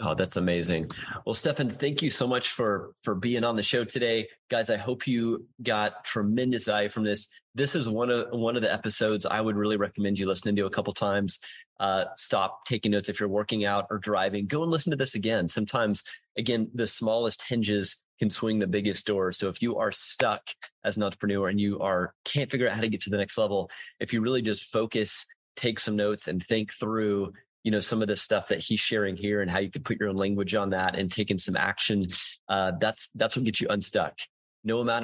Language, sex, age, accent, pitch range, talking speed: English, male, 30-49, American, 100-125 Hz, 230 wpm